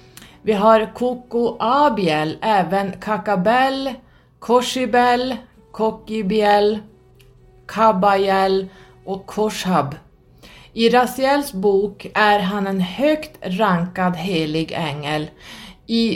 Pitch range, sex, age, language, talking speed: 175-220 Hz, female, 30-49, Swedish, 80 wpm